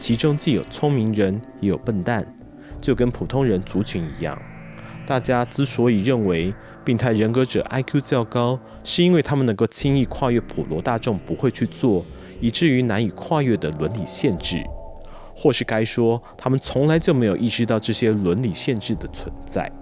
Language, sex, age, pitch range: Chinese, male, 30-49, 110-140 Hz